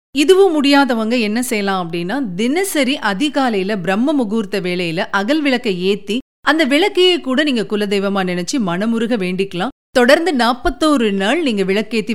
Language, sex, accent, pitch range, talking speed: Tamil, female, native, 195-280 Hz, 130 wpm